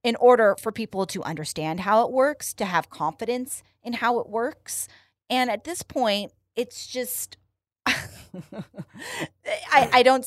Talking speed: 145 wpm